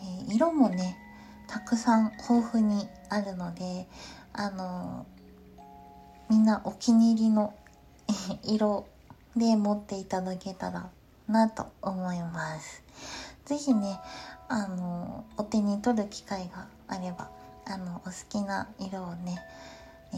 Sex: female